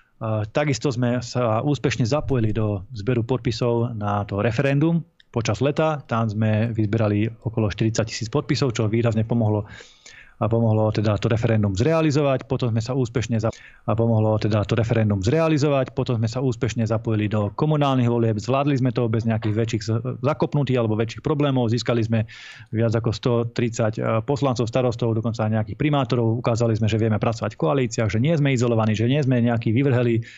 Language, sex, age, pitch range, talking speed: Slovak, male, 20-39, 115-130 Hz, 165 wpm